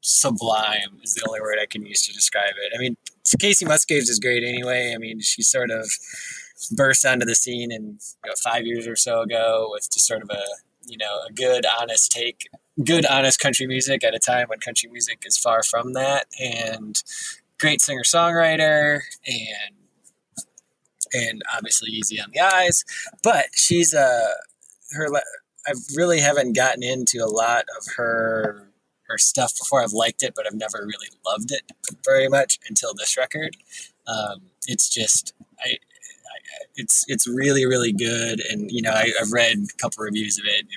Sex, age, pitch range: male, 20-39, 110-145 Hz